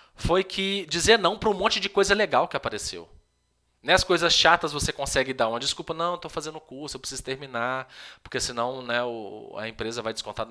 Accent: Brazilian